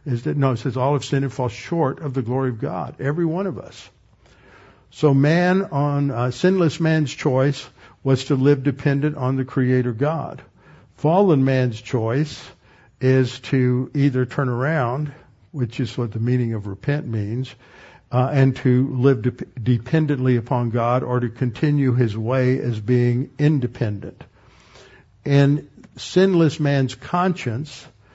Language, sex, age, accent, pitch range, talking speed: English, male, 60-79, American, 120-140 Hz, 150 wpm